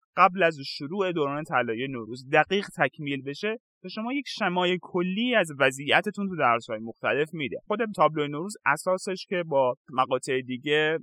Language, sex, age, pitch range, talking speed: Persian, male, 30-49, 135-195 Hz, 150 wpm